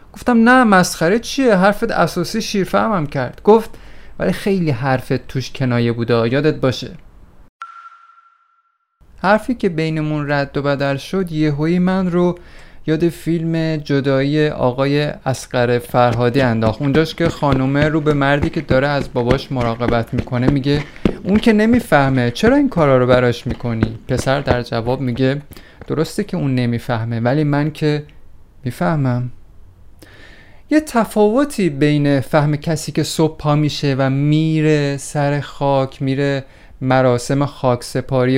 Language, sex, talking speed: Persian, male, 135 wpm